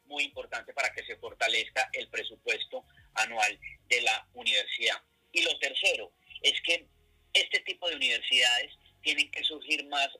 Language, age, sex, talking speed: Spanish, 30-49, male, 145 wpm